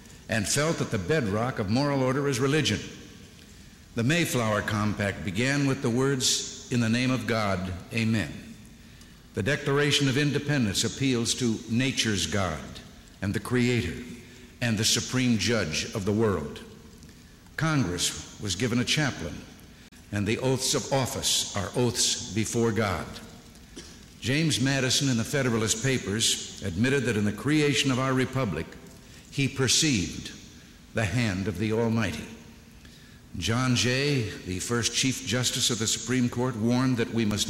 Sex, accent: male, American